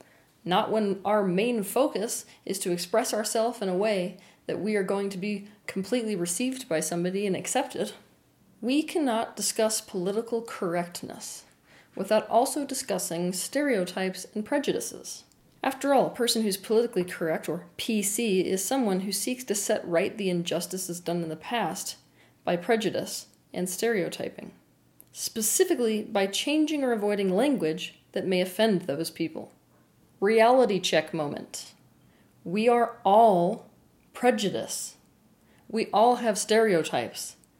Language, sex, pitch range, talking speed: English, female, 185-240 Hz, 130 wpm